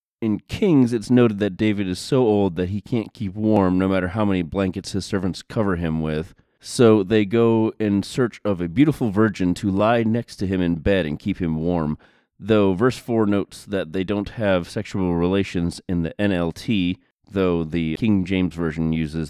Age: 30-49